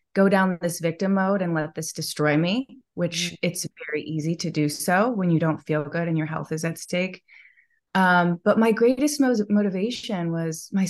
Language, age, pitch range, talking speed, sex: English, 20-39, 165-210 Hz, 200 wpm, female